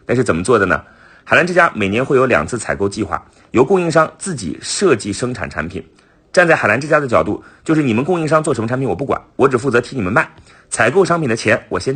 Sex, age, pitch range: male, 30-49, 95-135 Hz